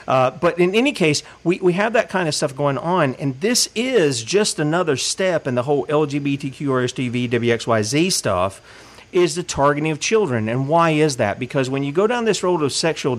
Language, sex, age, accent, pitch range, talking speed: English, male, 40-59, American, 135-190 Hz, 195 wpm